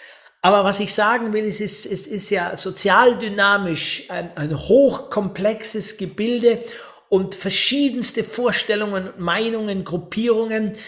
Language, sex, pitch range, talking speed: German, male, 155-220 Hz, 110 wpm